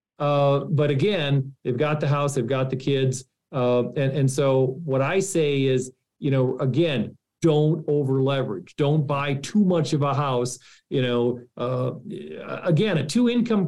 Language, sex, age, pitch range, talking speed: English, male, 40-59, 135-165 Hz, 160 wpm